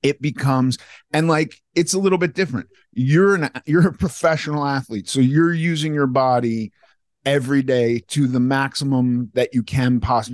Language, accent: English, American